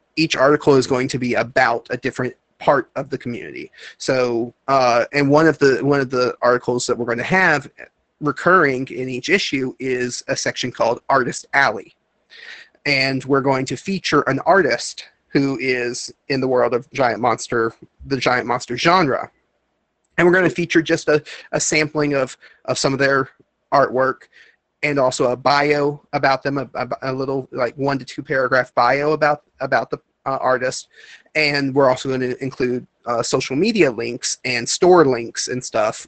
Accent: American